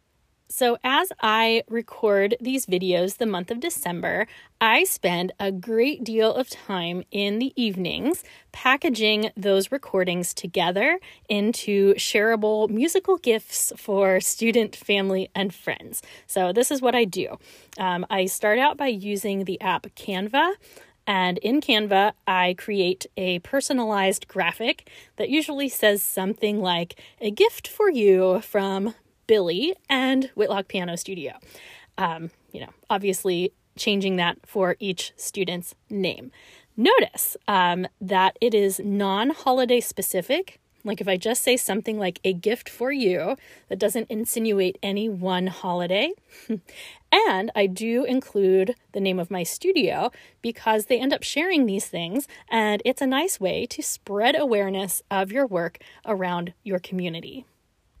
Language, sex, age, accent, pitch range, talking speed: English, female, 20-39, American, 190-245 Hz, 140 wpm